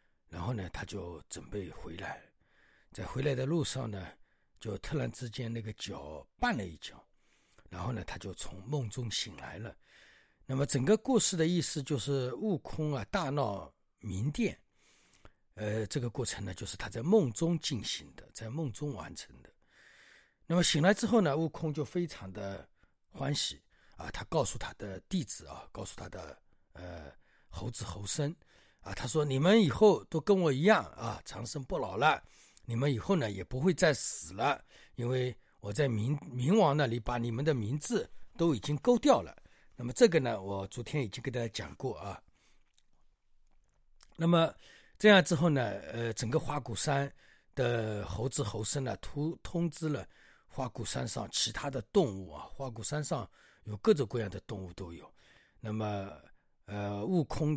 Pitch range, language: 105-160 Hz, Chinese